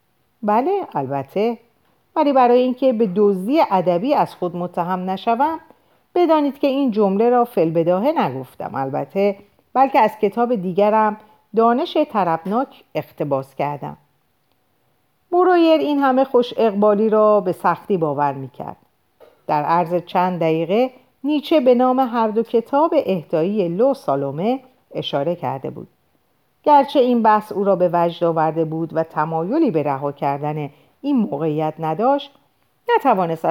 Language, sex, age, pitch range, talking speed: Persian, female, 50-69, 160-255 Hz, 130 wpm